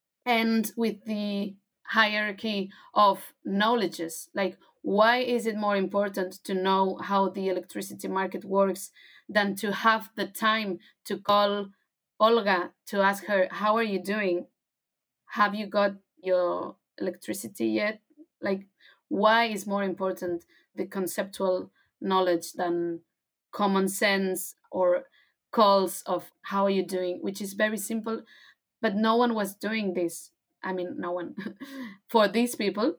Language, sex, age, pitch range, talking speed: English, female, 20-39, 190-225 Hz, 135 wpm